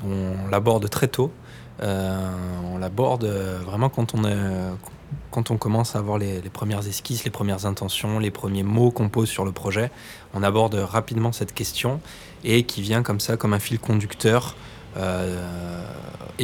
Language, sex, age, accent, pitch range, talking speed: French, male, 20-39, French, 95-115 Hz, 170 wpm